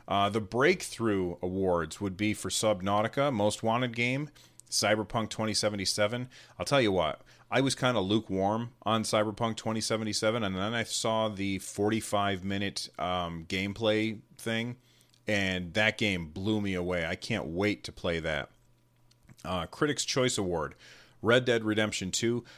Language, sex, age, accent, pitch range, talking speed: English, male, 30-49, American, 95-115 Hz, 140 wpm